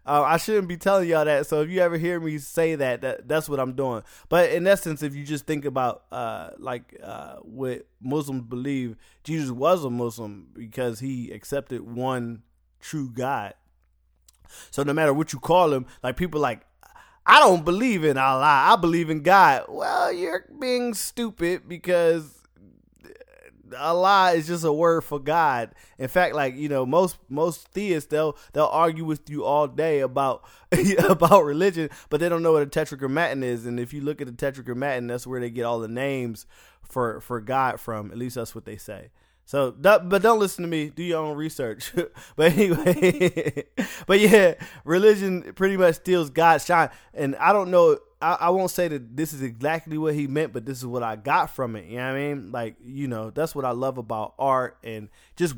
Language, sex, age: English, male, 20-39